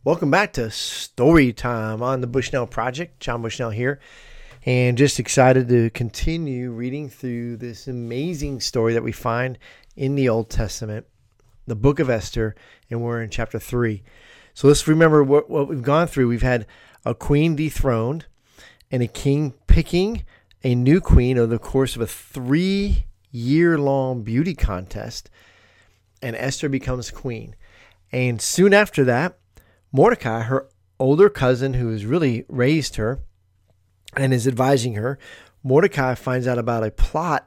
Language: English